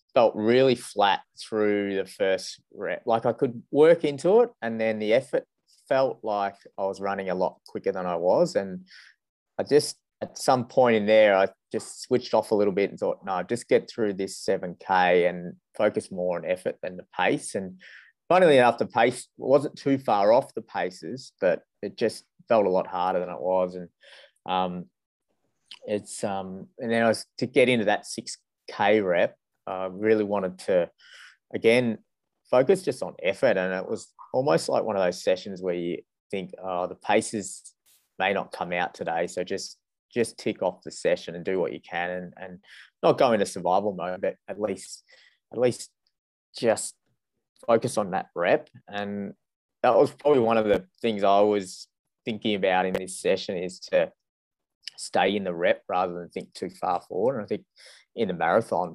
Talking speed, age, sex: 190 wpm, 20-39, male